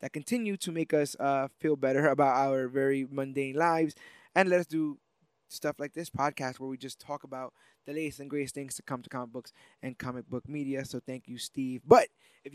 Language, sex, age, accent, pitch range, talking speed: English, male, 20-39, American, 135-170 Hz, 220 wpm